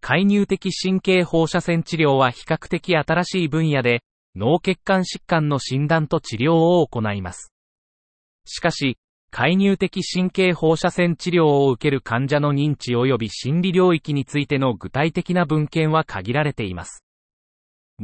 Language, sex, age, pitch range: Japanese, male, 30-49, 125-175 Hz